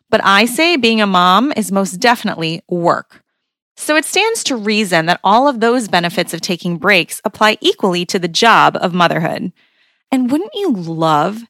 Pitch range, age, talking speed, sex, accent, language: 185-245 Hz, 20-39, 175 wpm, female, American, English